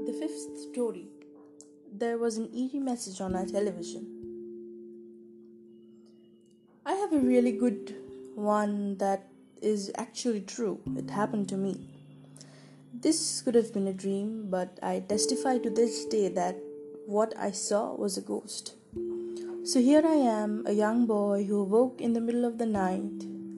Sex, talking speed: female, 150 wpm